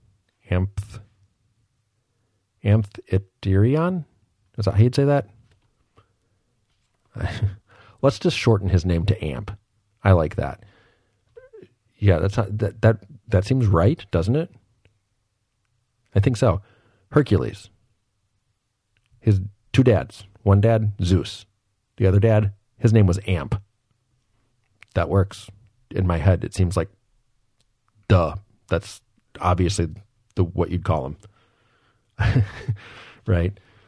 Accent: American